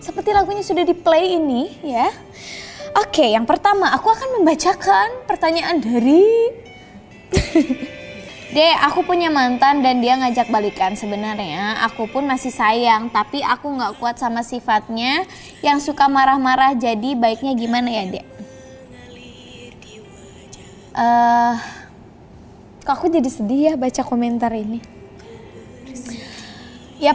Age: 20-39